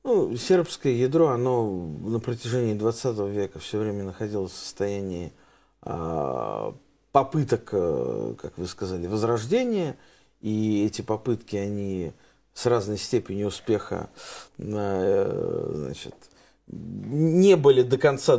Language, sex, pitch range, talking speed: Russian, male, 95-125 Hz, 100 wpm